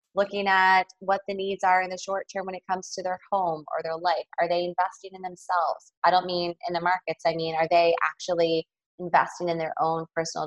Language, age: English, 20-39